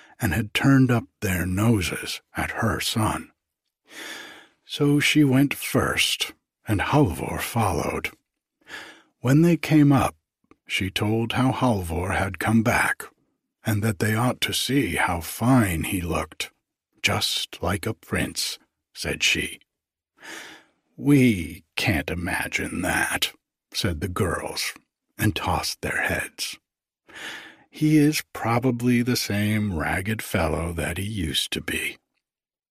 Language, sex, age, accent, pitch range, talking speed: English, male, 60-79, American, 95-130 Hz, 120 wpm